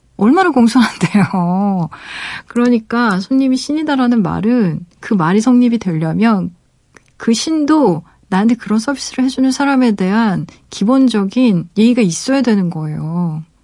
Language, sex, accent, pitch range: Korean, female, native, 170-235 Hz